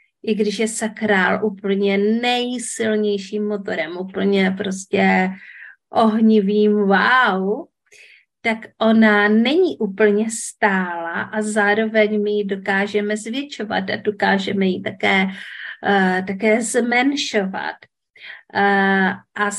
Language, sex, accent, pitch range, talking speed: Czech, female, native, 200-235 Hz, 95 wpm